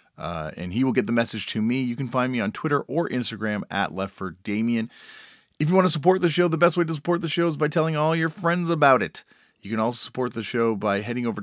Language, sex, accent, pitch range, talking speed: English, male, American, 100-140 Hz, 270 wpm